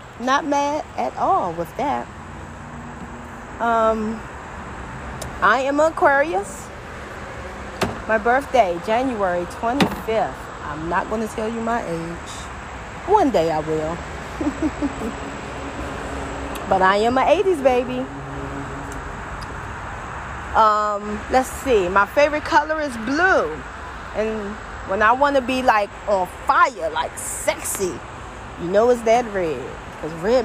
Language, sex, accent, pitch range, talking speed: English, female, American, 195-285 Hz, 115 wpm